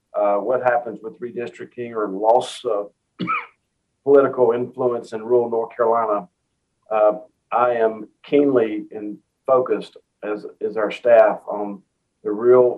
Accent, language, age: American, English, 50-69